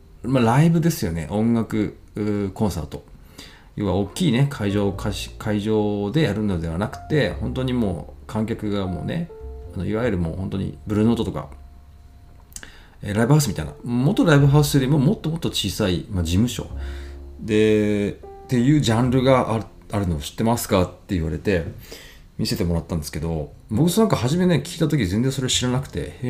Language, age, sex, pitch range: Japanese, 40-59, male, 85-120 Hz